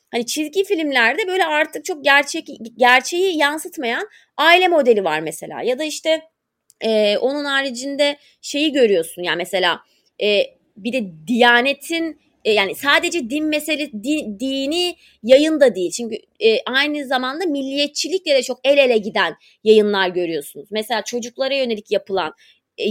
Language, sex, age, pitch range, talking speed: Turkish, female, 30-49, 220-310 Hz, 140 wpm